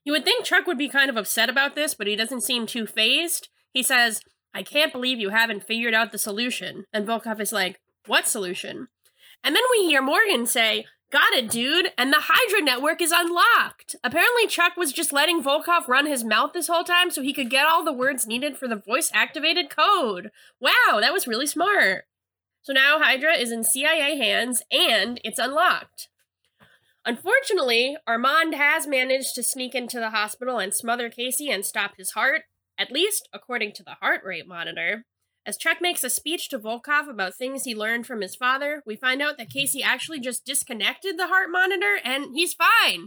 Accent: American